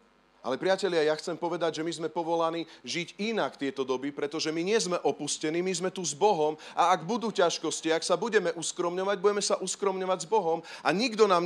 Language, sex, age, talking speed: Slovak, male, 40-59, 205 wpm